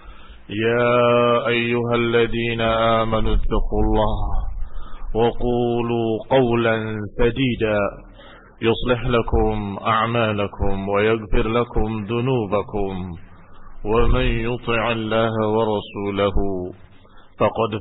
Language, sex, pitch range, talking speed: Indonesian, male, 100-115 Hz, 65 wpm